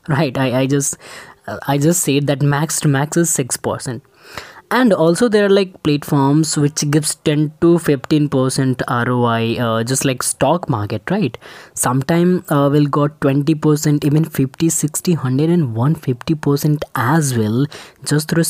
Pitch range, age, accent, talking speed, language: 130-165 Hz, 20-39, native, 160 wpm, Hindi